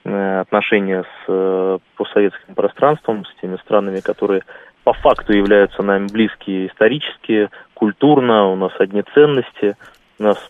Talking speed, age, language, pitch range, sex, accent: 120 wpm, 20-39, Russian, 95-110 Hz, male, native